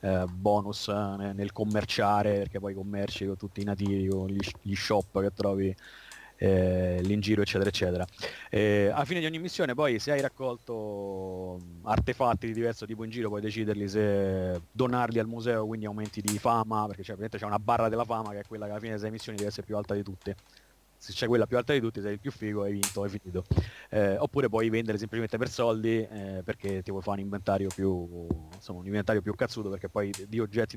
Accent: native